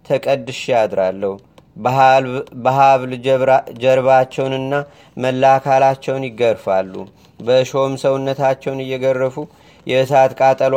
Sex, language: male, Amharic